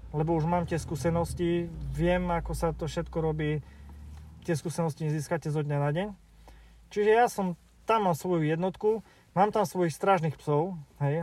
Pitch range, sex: 150-175 Hz, male